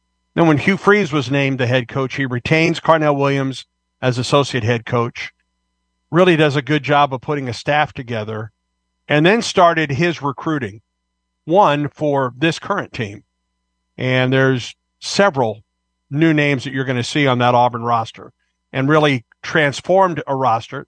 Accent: American